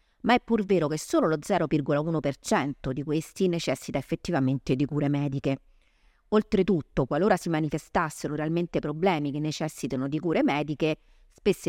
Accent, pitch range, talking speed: native, 140-160 Hz, 140 wpm